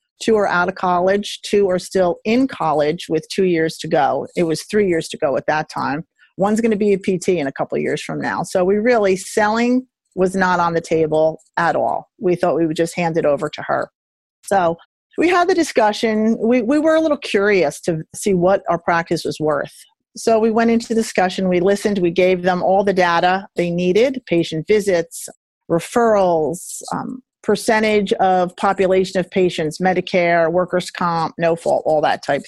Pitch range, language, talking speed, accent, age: 175-220 Hz, English, 200 wpm, American, 40-59